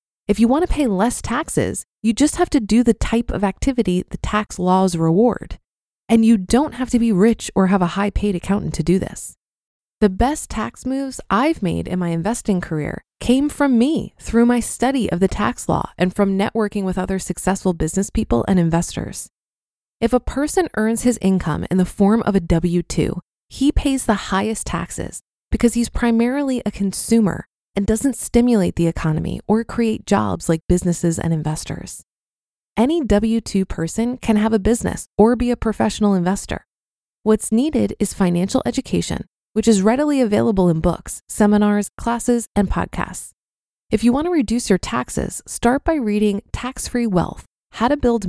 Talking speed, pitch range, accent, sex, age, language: 175 wpm, 190-240 Hz, American, female, 20-39, English